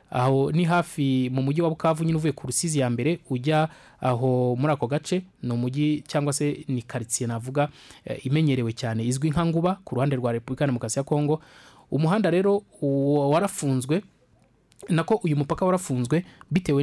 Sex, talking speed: male, 140 wpm